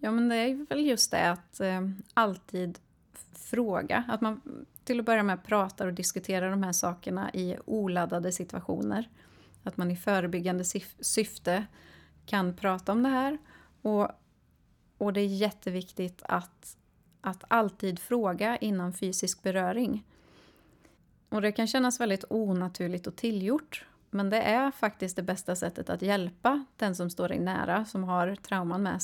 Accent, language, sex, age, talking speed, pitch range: native, Swedish, female, 30-49, 155 wpm, 185-225 Hz